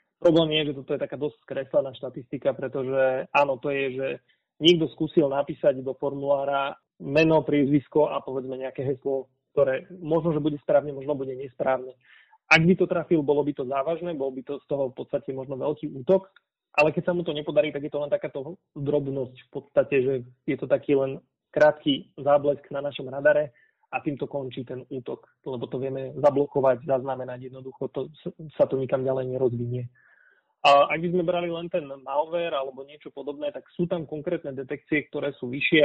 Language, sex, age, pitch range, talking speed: Slovak, male, 30-49, 135-155 Hz, 185 wpm